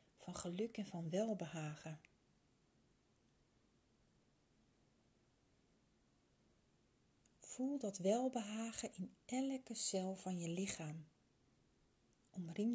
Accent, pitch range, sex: Dutch, 175-230 Hz, female